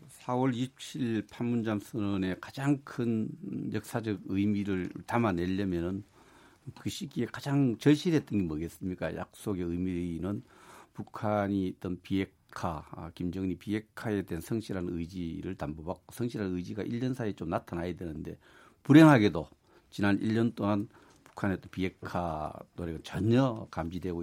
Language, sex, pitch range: Korean, male, 90-115 Hz